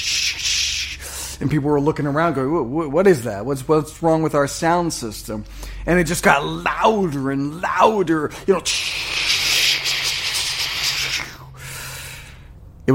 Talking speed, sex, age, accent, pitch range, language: 120 wpm, male, 40-59, American, 115-165 Hz, English